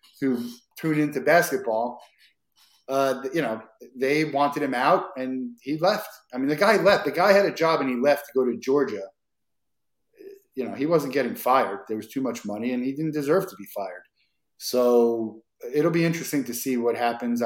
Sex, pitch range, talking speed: male, 115-145 Hz, 195 wpm